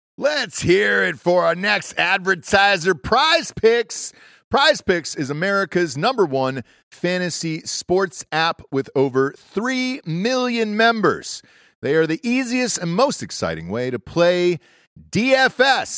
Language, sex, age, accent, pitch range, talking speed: English, male, 40-59, American, 150-220 Hz, 130 wpm